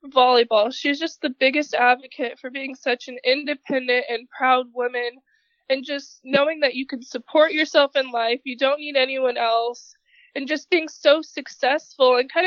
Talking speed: 175 wpm